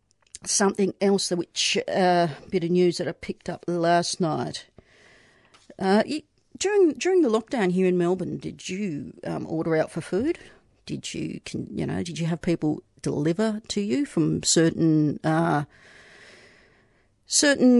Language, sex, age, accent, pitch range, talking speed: English, female, 50-69, Australian, 155-195 Hz, 155 wpm